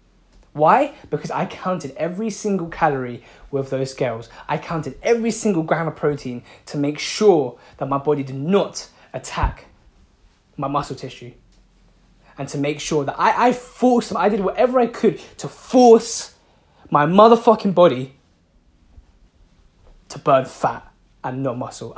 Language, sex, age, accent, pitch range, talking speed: English, male, 10-29, British, 120-190 Hz, 145 wpm